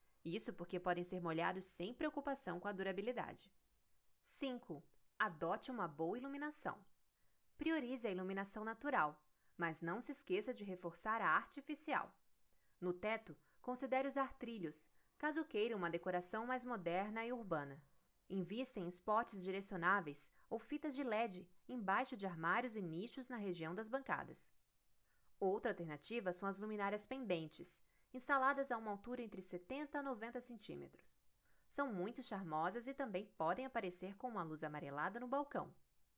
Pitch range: 180-255 Hz